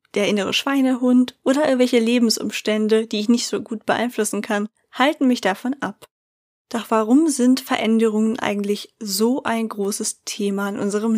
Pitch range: 205-245 Hz